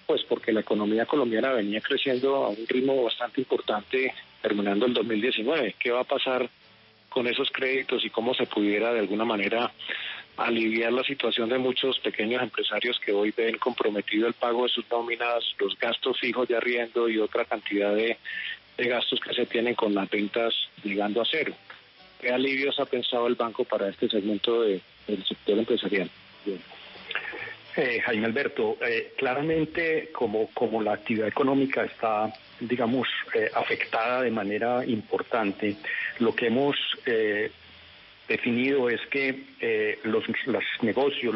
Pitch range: 115-135 Hz